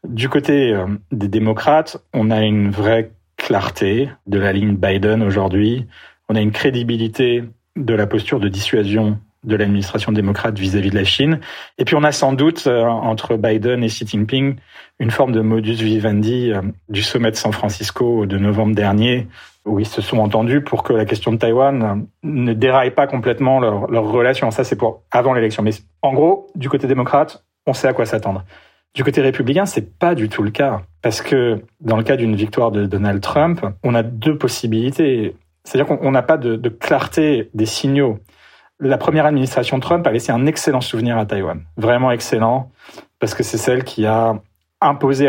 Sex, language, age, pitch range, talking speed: male, French, 40-59, 105-130 Hz, 185 wpm